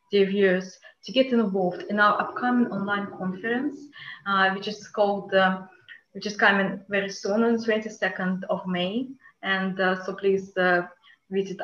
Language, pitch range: English, 185-225 Hz